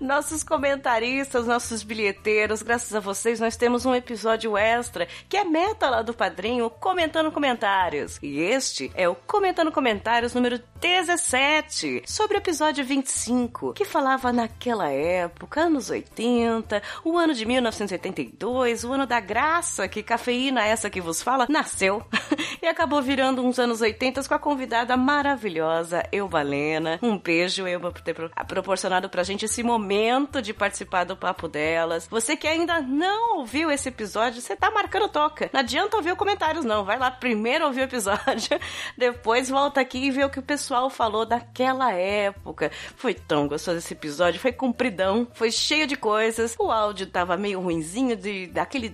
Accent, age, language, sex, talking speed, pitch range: Brazilian, 30-49, Portuguese, female, 160 wpm, 205-285 Hz